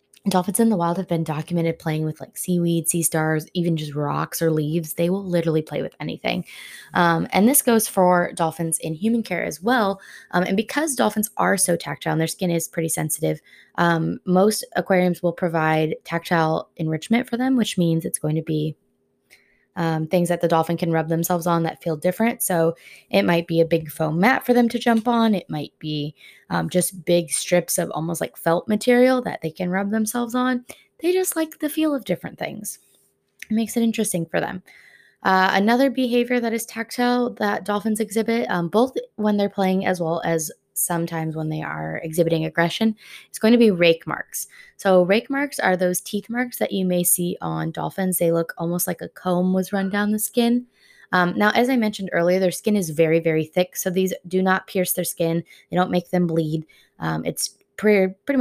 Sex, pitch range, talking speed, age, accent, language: female, 165-215 Hz, 205 wpm, 20-39, American, English